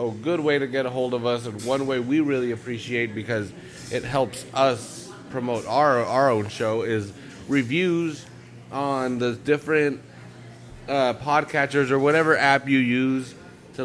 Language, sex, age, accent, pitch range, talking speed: English, male, 30-49, American, 110-135 Hz, 165 wpm